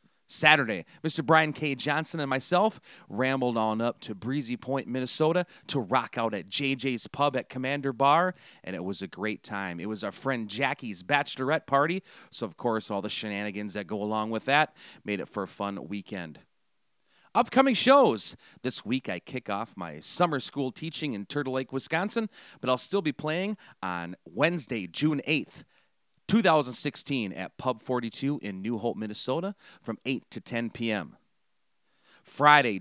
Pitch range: 110-160 Hz